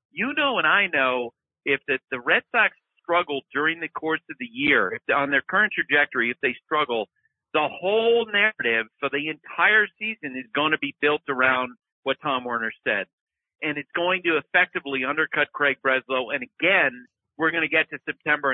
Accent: American